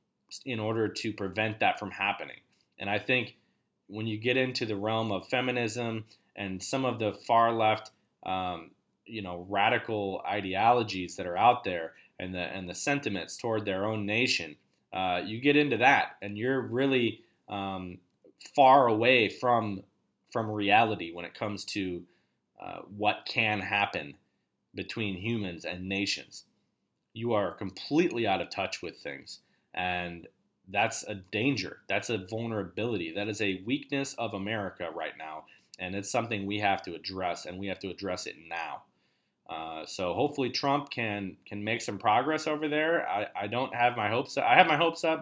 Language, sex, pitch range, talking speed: English, male, 95-115 Hz, 170 wpm